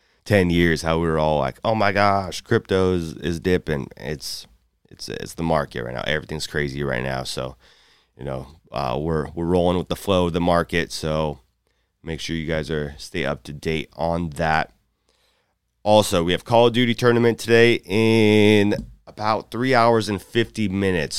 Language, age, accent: English, 30-49, American